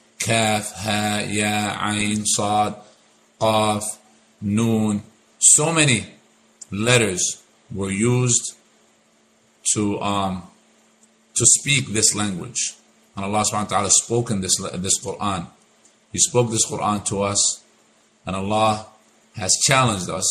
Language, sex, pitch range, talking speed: English, male, 105-120 Hz, 110 wpm